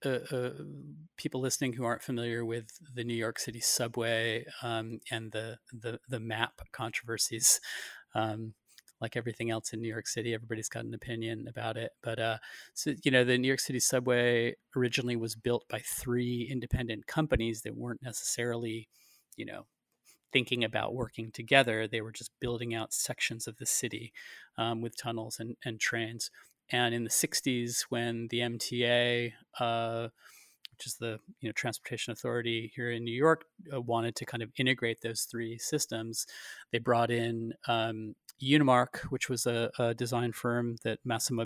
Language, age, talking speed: English, 30-49, 170 wpm